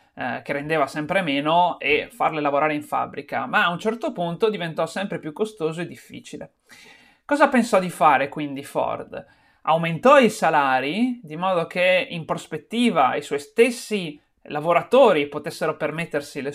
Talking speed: 150 wpm